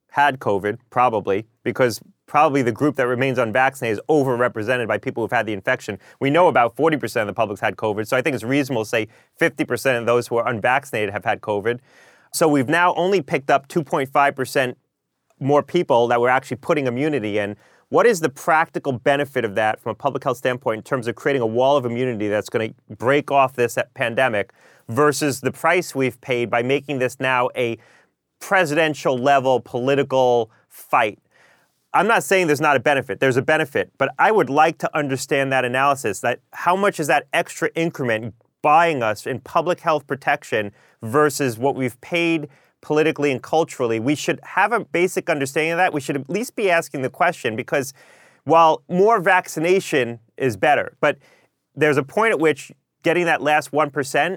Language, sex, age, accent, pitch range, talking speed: English, male, 30-49, American, 125-155 Hz, 185 wpm